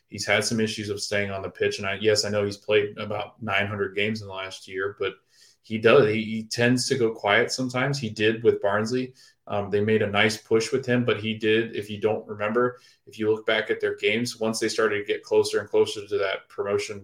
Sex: male